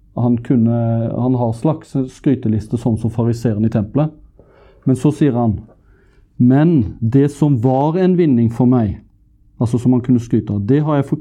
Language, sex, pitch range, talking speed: English, male, 110-135 Hz, 165 wpm